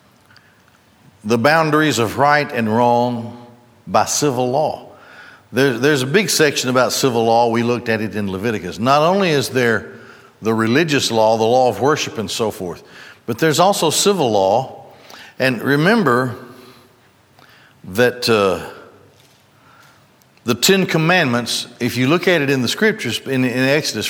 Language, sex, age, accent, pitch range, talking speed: English, male, 60-79, American, 120-160 Hz, 145 wpm